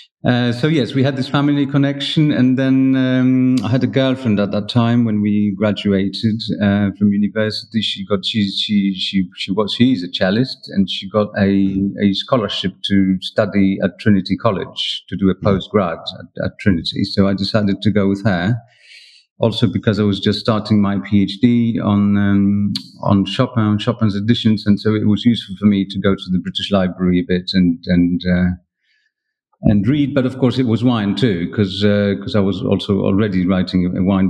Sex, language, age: male, English, 40-59